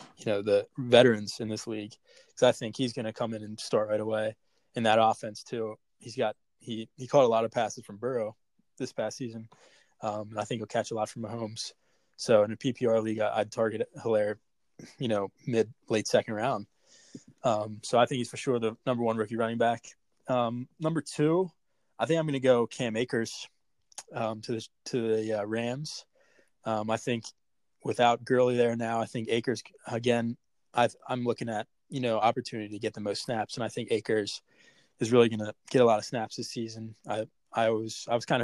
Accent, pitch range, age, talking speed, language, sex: American, 110-125 Hz, 20-39, 215 wpm, English, male